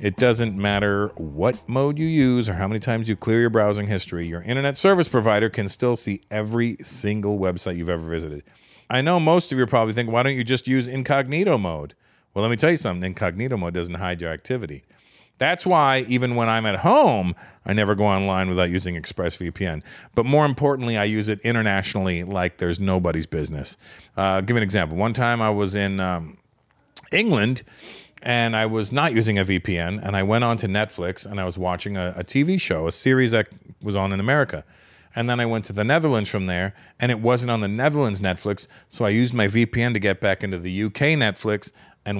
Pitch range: 95-125 Hz